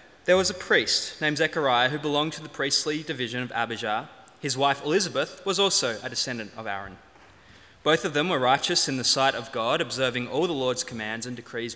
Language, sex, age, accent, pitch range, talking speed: English, male, 20-39, Australian, 120-155 Hz, 205 wpm